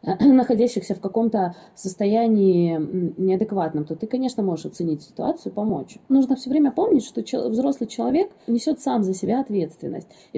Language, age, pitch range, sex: Russian, 20-39, 185-235 Hz, female